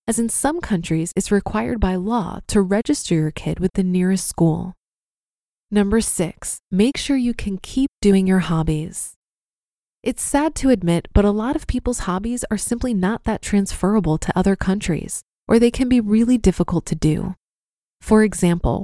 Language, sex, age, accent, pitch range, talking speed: English, female, 20-39, American, 185-235 Hz, 170 wpm